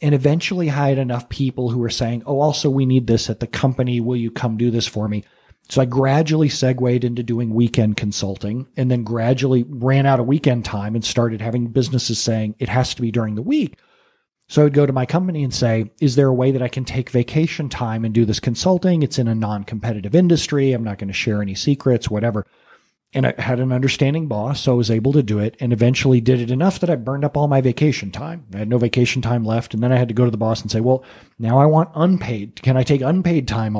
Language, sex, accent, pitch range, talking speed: English, male, American, 115-145 Hz, 250 wpm